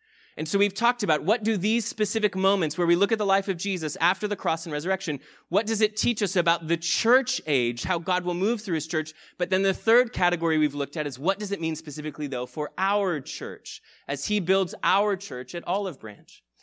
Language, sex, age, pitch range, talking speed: English, male, 30-49, 150-200 Hz, 235 wpm